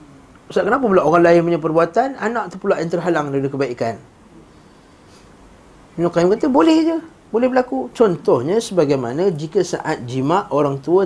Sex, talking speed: male, 150 wpm